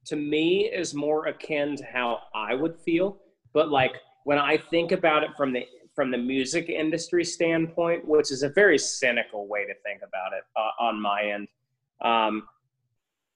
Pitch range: 120-165 Hz